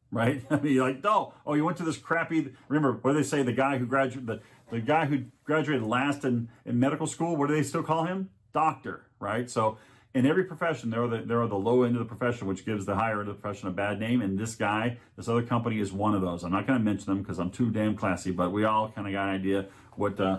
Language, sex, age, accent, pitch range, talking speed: English, male, 40-59, American, 100-130 Hz, 260 wpm